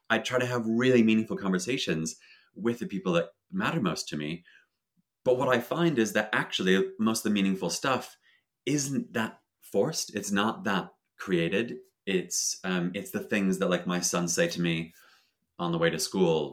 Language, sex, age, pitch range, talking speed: English, male, 30-49, 85-125 Hz, 185 wpm